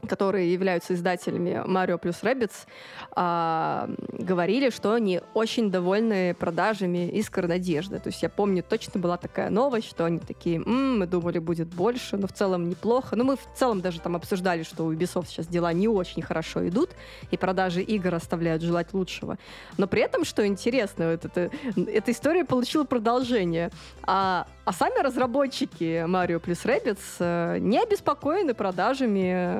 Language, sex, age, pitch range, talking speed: Russian, female, 20-39, 175-220 Hz, 160 wpm